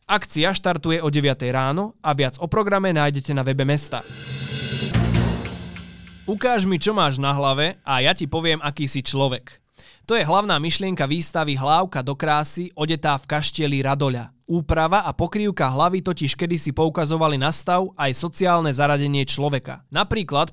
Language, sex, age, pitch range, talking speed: Slovak, male, 20-39, 135-175 Hz, 150 wpm